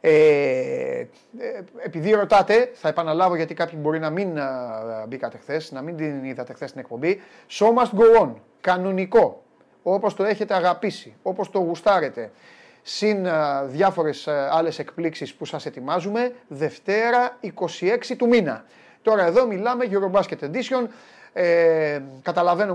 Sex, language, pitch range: male, Greek, 150-200 Hz